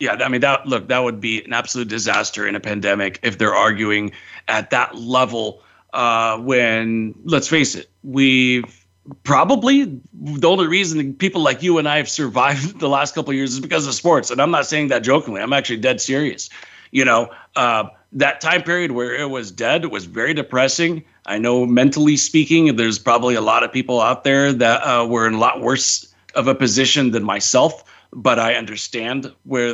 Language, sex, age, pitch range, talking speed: English, male, 40-59, 115-145 Hz, 195 wpm